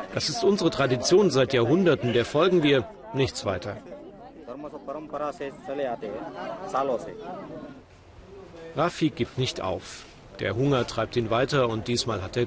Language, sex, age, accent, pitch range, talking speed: German, male, 40-59, German, 110-140 Hz, 115 wpm